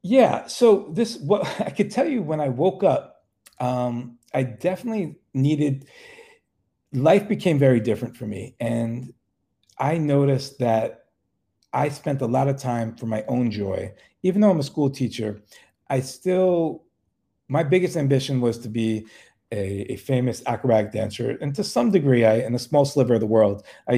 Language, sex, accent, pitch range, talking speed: English, male, American, 115-145 Hz, 170 wpm